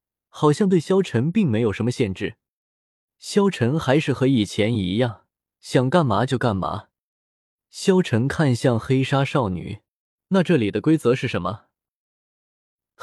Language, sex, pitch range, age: Chinese, male, 110-160 Hz, 20-39